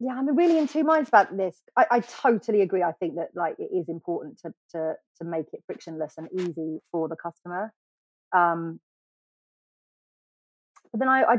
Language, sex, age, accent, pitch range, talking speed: English, female, 30-49, British, 165-215 Hz, 185 wpm